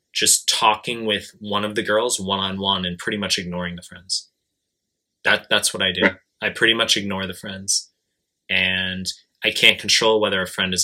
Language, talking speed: English, 185 wpm